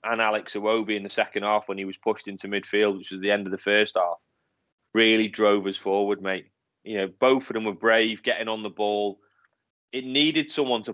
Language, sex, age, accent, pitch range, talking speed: English, male, 30-49, British, 100-120 Hz, 225 wpm